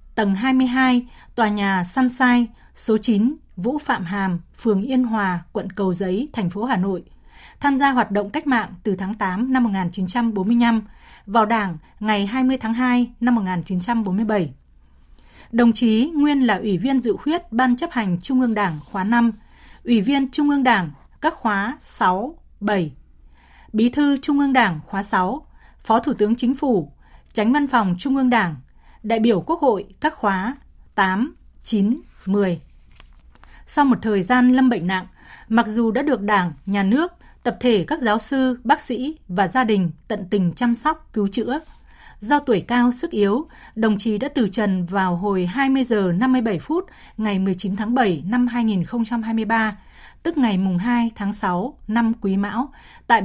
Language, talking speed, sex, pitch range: Vietnamese, 170 wpm, female, 195-250 Hz